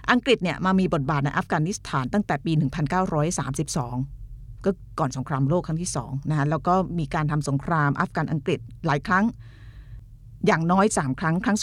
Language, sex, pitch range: Thai, female, 135-180 Hz